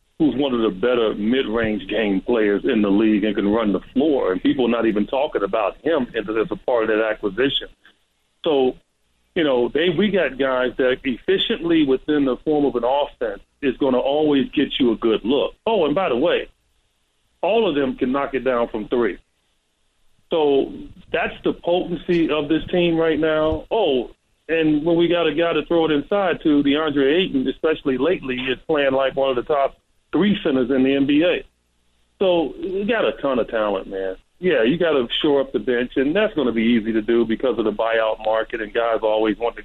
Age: 40-59